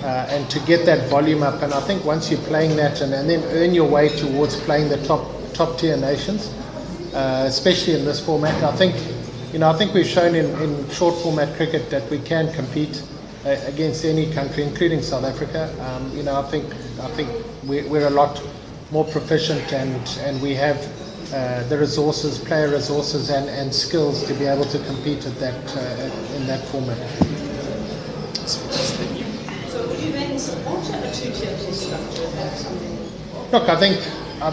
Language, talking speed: English, 170 wpm